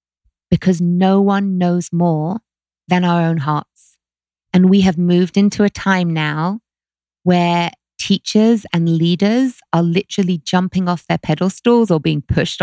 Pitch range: 165-200 Hz